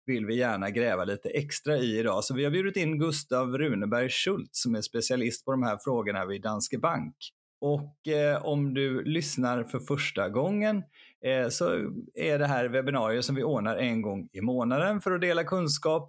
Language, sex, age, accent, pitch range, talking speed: Swedish, male, 30-49, native, 115-155 Hz, 190 wpm